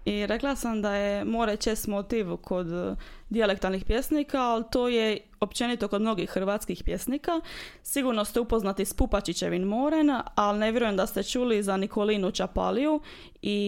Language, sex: Croatian, female